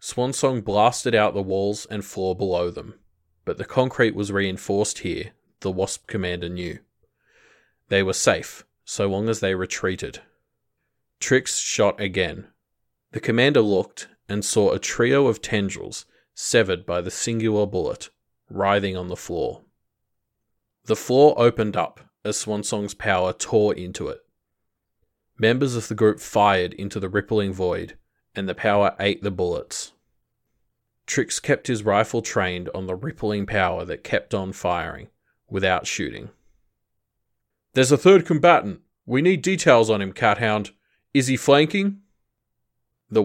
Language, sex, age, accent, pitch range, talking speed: English, male, 20-39, Australian, 95-115 Hz, 145 wpm